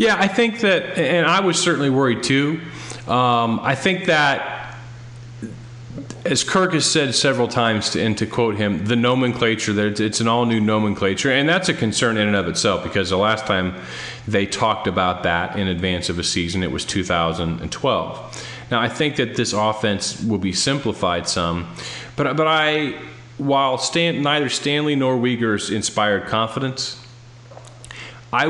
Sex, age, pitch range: male, 40-59, 95-125 Hz